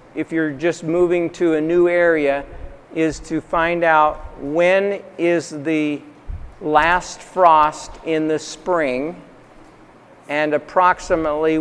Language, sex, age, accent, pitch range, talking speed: English, male, 50-69, American, 150-175 Hz, 115 wpm